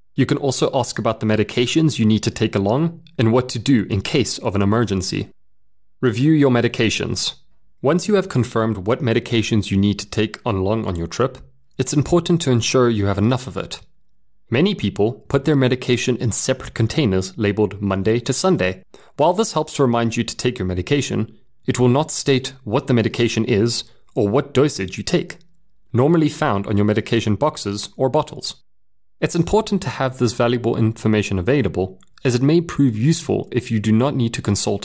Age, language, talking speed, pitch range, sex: 30-49, English, 190 wpm, 100-135 Hz, male